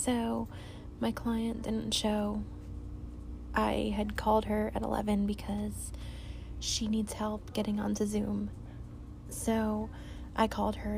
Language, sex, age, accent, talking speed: English, female, 20-39, American, 120 wpm